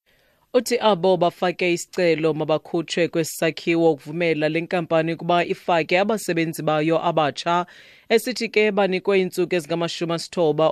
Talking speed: 125 wpm